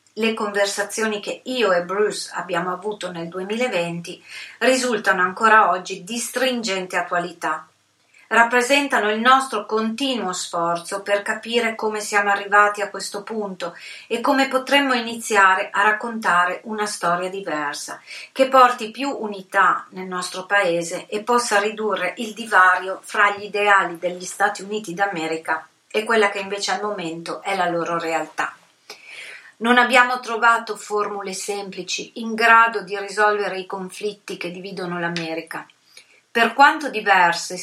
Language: Italian